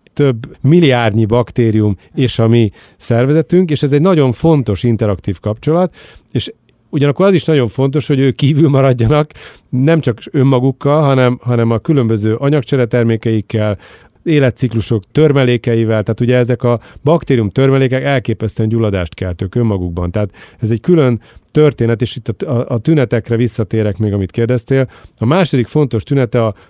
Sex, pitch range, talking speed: male, 115-145 Hz, 145 wpm